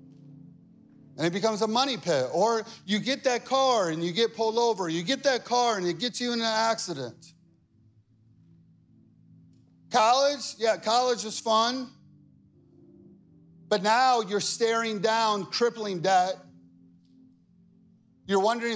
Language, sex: English, male